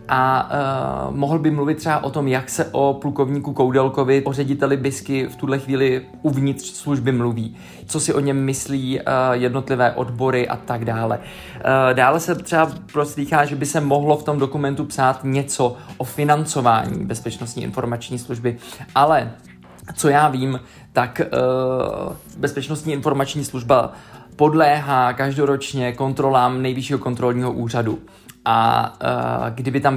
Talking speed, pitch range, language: 140 wpm, 125-140 Hz, Czech